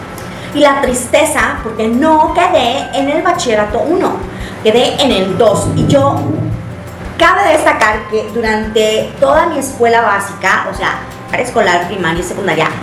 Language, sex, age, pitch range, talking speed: Spanish, female, 30-49, 215-265 Hz, 140 wpm